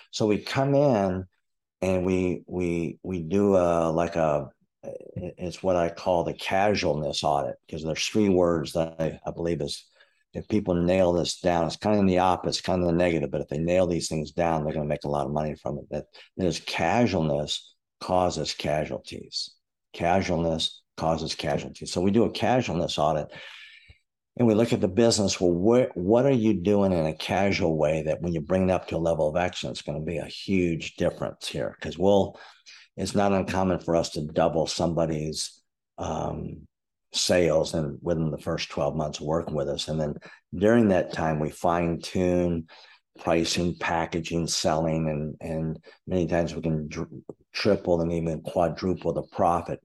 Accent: American